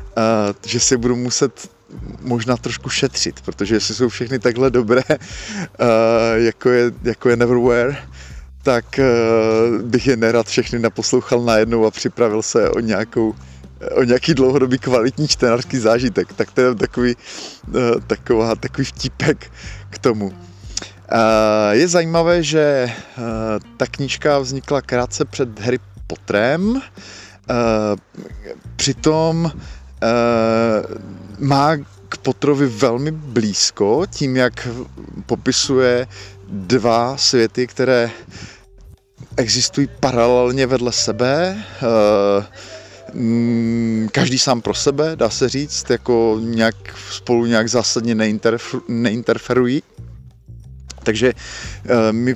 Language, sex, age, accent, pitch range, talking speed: Czech, male, 30-49, native, 110-130 Hz, 95 wpm